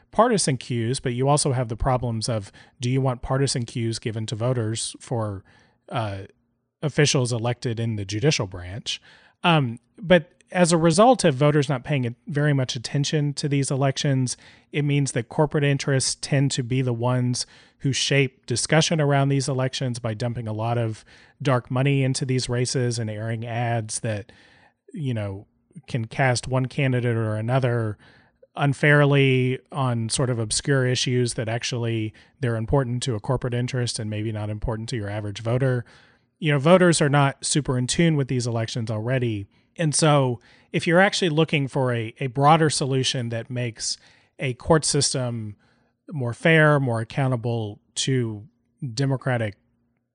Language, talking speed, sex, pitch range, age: English, 160 wpm, male, 115-145 Hz, 30-49